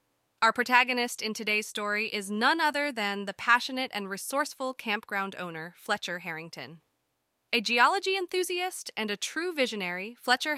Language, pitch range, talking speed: English, 180-240 Hz, 140 wpm